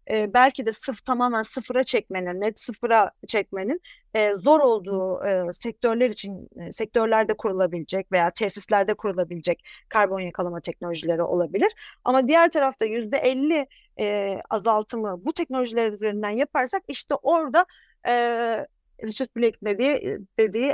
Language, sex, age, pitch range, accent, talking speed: Turkish, female, 40-59, 205-265 Hz, native, 105 wpm